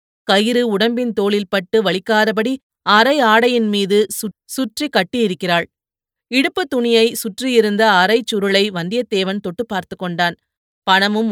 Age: 30-49